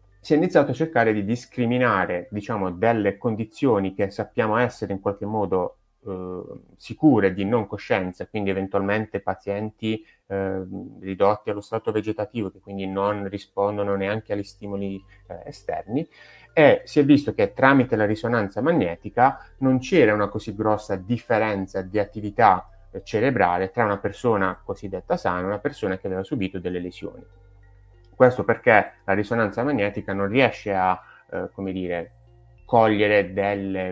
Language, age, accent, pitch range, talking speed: Italian, 30-49, native, 95-110 Hz, 145 wpm